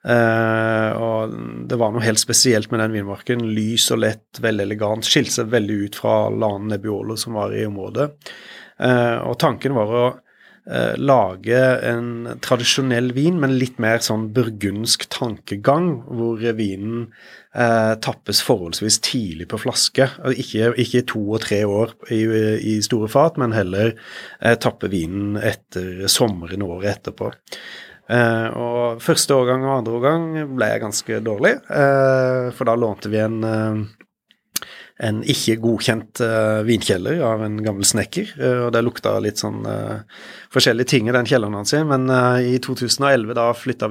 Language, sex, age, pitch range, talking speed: English, male, 30-49, 110-130 Hz, 155 wpm